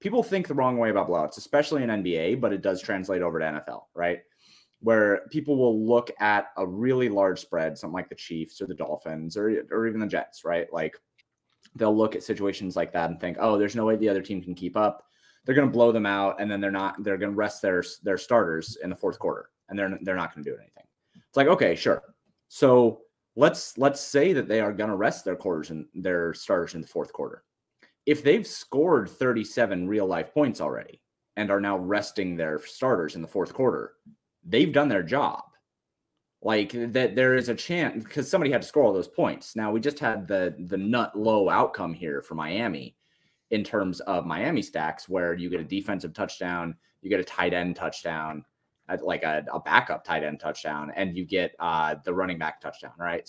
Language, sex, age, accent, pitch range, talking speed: English, male, 30-49, American, 90-115 Hz, 215 wpm